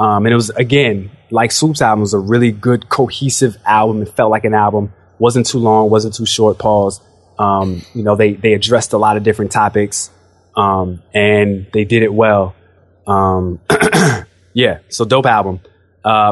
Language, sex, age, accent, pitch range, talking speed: English, male, 20-39, American, 105-145 Hz, 185 wpm